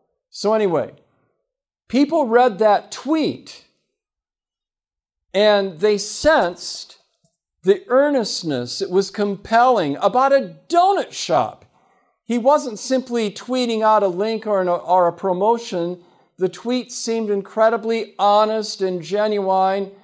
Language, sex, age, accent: English, male, 50-69, American